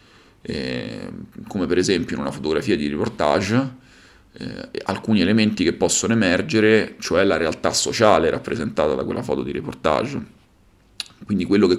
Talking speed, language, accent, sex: 145 wpm, Italian, native, male